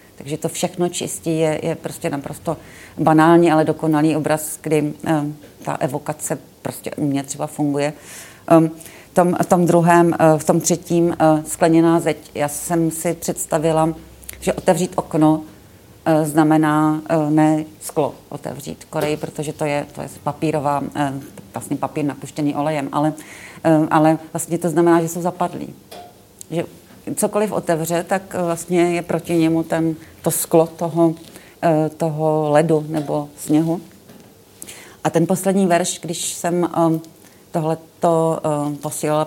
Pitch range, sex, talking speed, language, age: 155-170 Hz, female, 140 wpm, Czech, 40-59